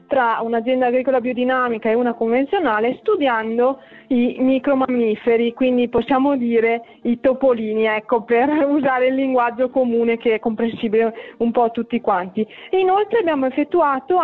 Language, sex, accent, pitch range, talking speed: Italian, female, native, 220-275 Hz, 135 wpm